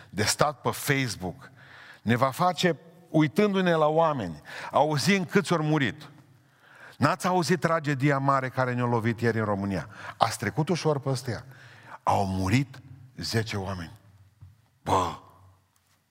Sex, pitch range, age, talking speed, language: male, 105-155 Hz, 50-69, 125 wpm, Romanian